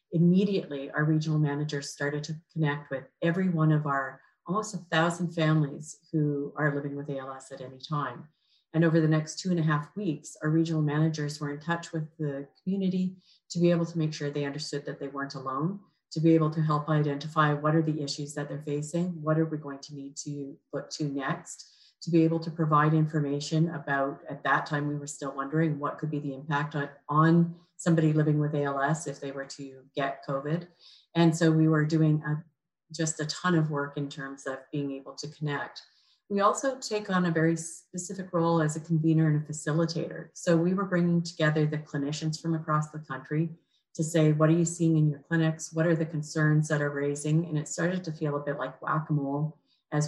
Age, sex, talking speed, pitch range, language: 40-59, female, 210 wpm, 145-165 Hz, English